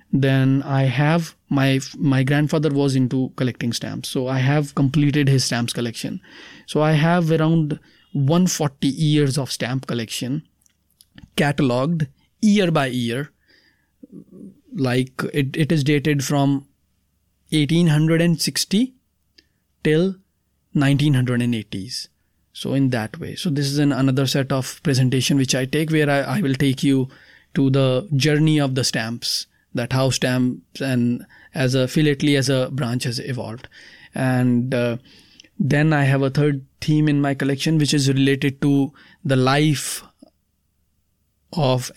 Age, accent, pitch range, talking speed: 20-39, Indian, 125-150 Hz, 135 wpm